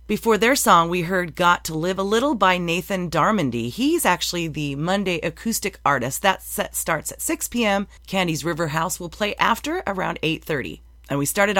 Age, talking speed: 30-49, 185 wpm